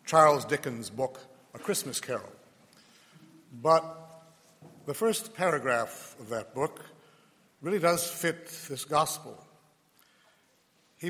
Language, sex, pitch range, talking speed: English, male, 145-200 Hz, 105 wpm